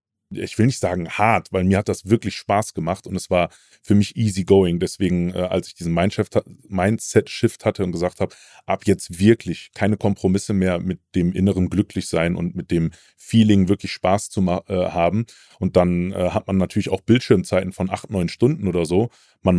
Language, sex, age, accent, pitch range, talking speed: German, male, 30-49, German, 95-105 Hz, 185 wpm